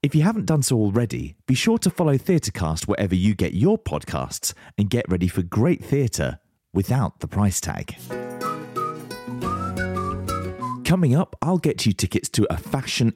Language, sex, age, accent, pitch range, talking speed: English, male, 30-49, British, 80-130 Hz, 160 wpm